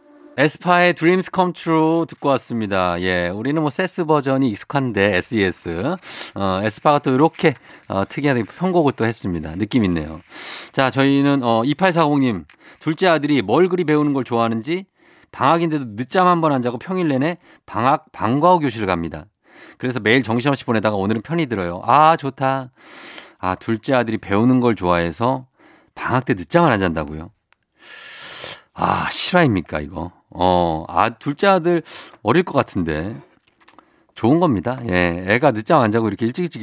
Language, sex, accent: Korean, male, native